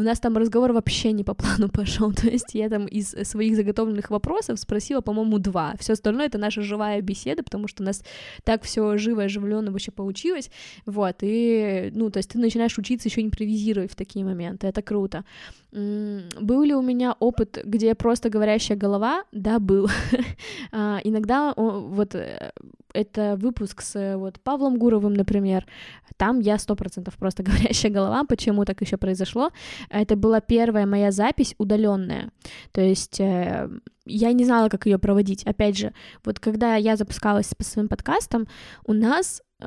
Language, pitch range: Russian, 205-240 Hz